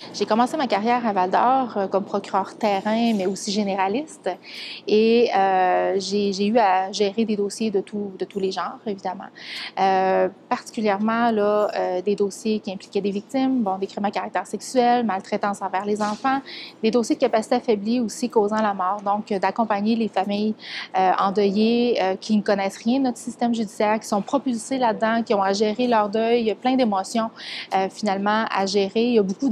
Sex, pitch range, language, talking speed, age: female, 195-230 Hz, French, 190 wpm, 30-49